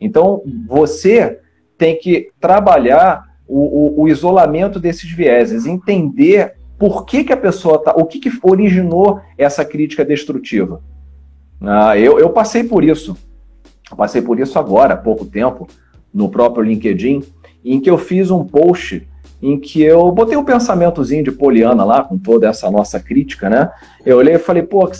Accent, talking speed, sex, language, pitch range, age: Brazilian, 165 wpm, male, Portuguese, 125-205 Hz, 40-59